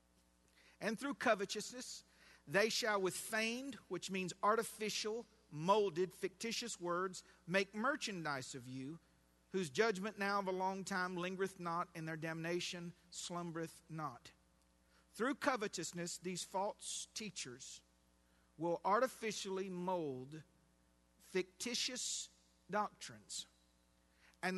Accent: American